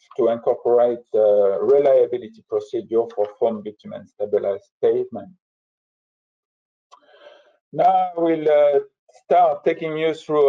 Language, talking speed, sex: English, 105 wpm, male